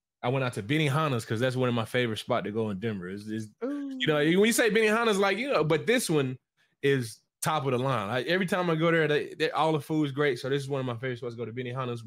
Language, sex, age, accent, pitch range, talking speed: English, male, 20-39, American, 115-150 Hz, 295 wpm